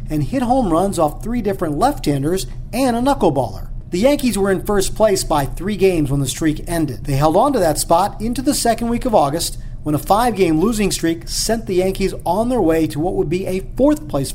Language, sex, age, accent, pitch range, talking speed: English, male, 40-59, American, 140-195 Hz, 220 wpm